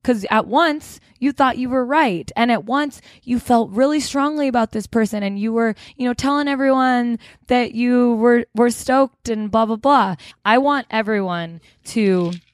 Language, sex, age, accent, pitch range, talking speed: English, female, 20-39, American, 165-225 Hz, 180 wpm